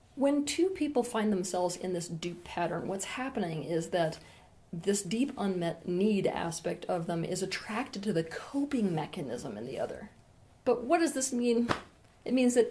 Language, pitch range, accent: English, 170-230 Hz, American